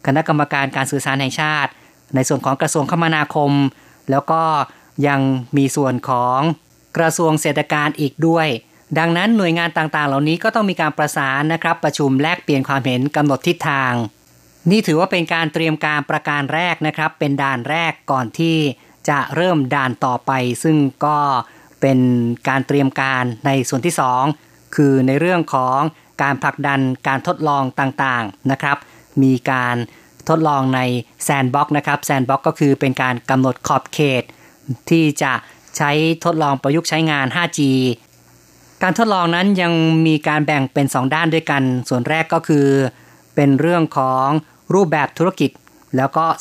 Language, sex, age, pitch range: Thai, female, 30-49, 135-160 Hz